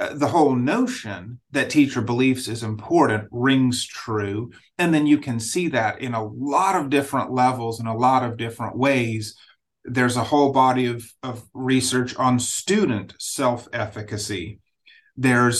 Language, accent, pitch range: English, American, 115-145 Hz